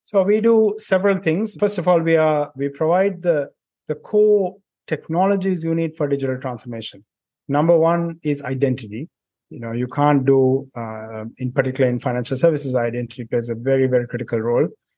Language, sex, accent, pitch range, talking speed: English, male, Indian, 125-150 Hz, 170 wpm